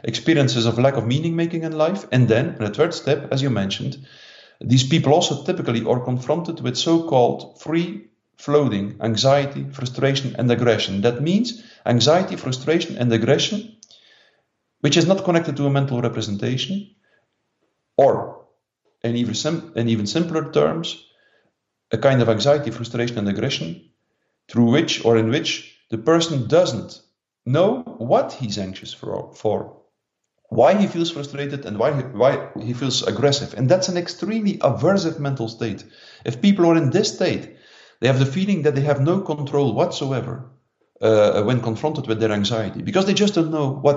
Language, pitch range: English, 115-165 Hz